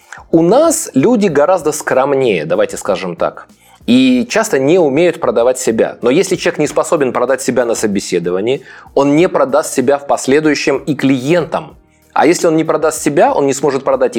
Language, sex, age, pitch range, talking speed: Russian, male, 20-39, 120-180 Hz, 175 wpm